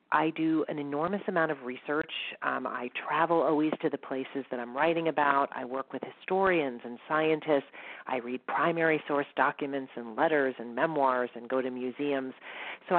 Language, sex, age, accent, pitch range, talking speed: English, female, 40-59, American, 140-165 Hz, 175 wpm